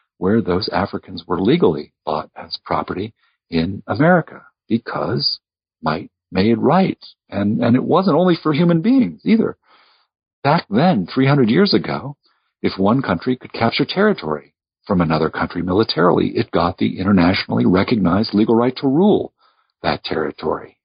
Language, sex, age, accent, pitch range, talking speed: English, male, 50-69, American, 105-170 Hz, 140 wpm